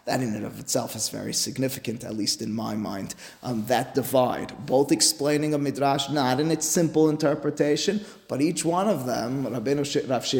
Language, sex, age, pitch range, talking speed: English, male, 30-49, 125-150 Hz, 185 wpm